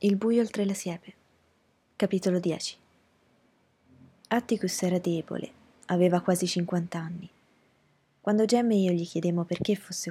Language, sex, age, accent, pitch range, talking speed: Italian, female, 20-39, native, 160-200 Hz, 130 wpm